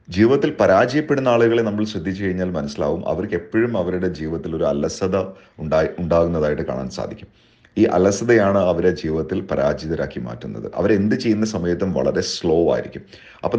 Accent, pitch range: native, 85-110 Hz